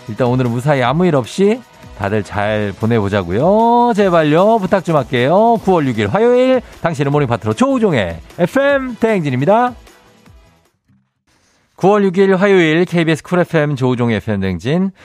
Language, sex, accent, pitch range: Korean, male, native, 100-145 Hz